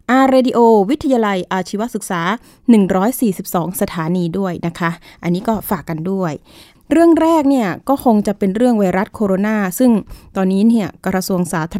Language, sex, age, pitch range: Thai, female, 20-39, 190-255 Hz